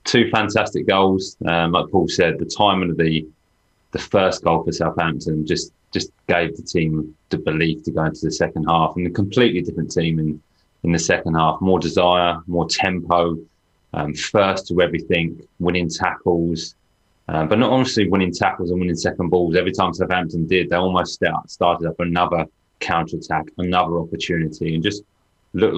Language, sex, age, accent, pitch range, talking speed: English, male, 20-39, British, 80-95 Hz, 175 wpm